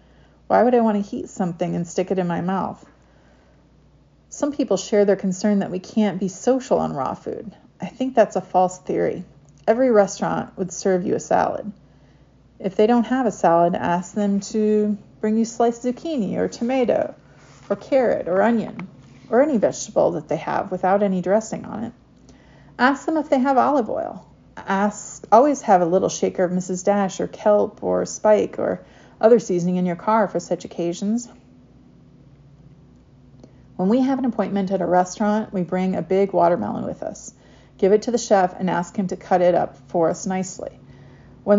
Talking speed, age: 185 wpm, 30-49